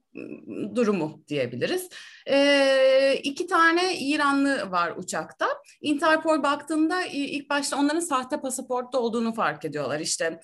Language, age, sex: Turkish, 30-49, female